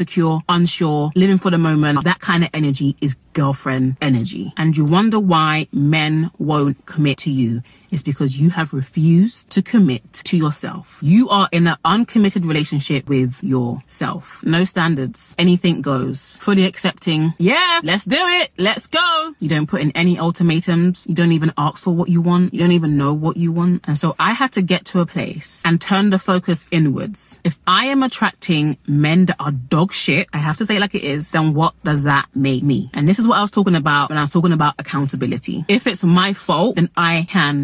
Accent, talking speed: British, 205 wpm